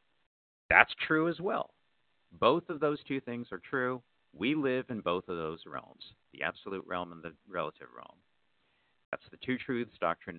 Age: 50-69